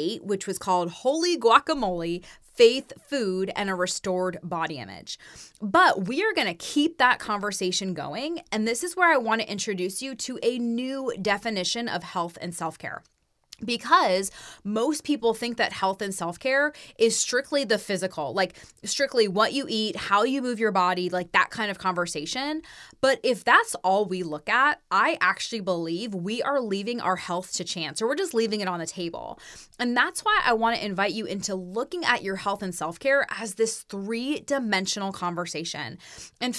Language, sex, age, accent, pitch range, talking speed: English, female, 20-39, American, 190-265 Hz, 180 wpm